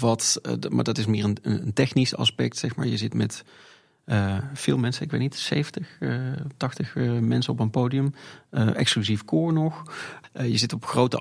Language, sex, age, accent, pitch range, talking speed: Dutch, male, 30-49, Dutch, 110-130 Hz, 195 wpm